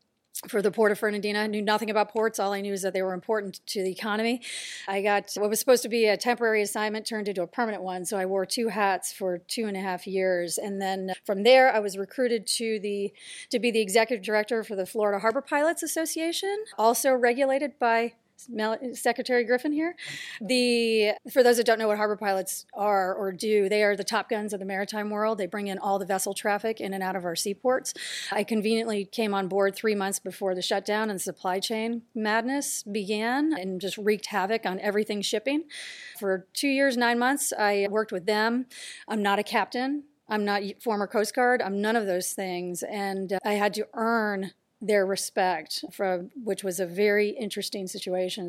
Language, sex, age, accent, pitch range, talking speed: English, female, 30-49, American, 195-235 Hz, 205 wpm